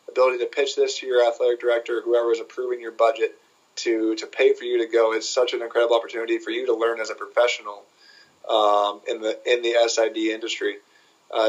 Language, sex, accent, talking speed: English, male, American, 210 wpm